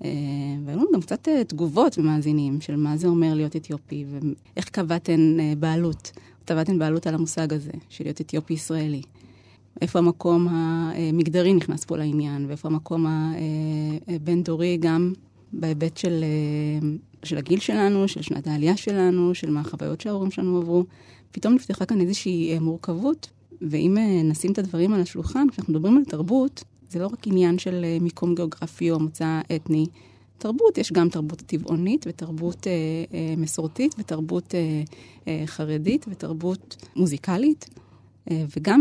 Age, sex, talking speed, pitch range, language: 30-49, female, 140 wpm, 155-185 Hz, Hebrew